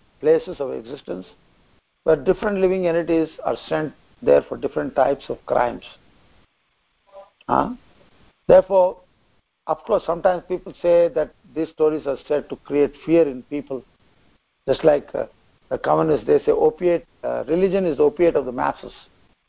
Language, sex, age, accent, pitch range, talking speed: English, male, 60-79, Indian, 145-205 Hz, 150 wpm